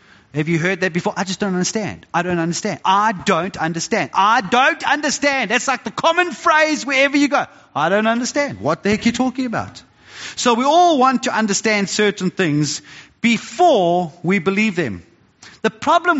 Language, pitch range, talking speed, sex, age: English, 195-250 Hz, 185 wpm, male, 30-49